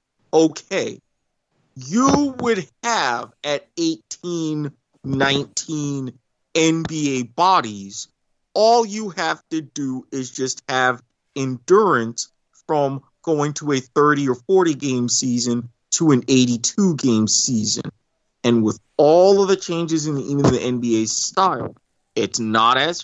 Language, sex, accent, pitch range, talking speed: English, male, American, 120-165 Hz, 120 wpm